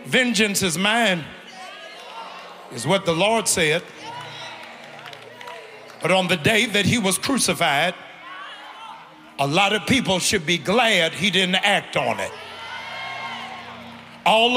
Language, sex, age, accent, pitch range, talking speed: English, male, 50-69, American, 185-250 Hz, 120 wpm